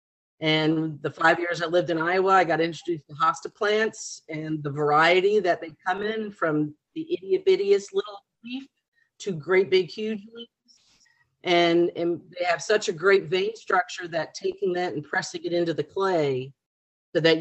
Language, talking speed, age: English, 175 wpm, 40-59